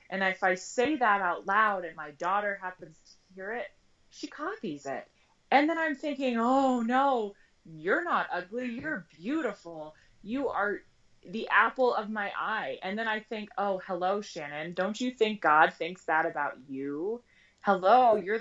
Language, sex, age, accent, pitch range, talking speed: English, female, 20-39, American, 170-225 Hz, 170 wpm